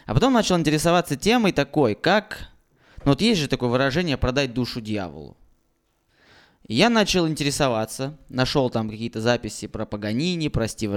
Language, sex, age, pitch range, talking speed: Russian, male, 20-39, 115-160 Hz, 150 wpm